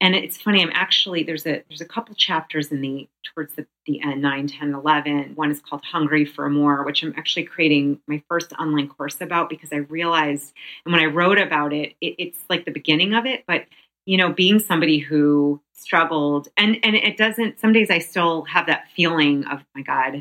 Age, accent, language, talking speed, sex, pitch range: 30-49, American, English, 215 wpm, female, 150-190 Hz